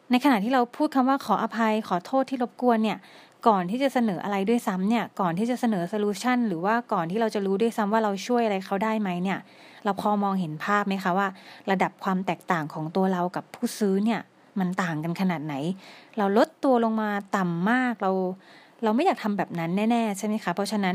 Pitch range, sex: 185-230 Hz, female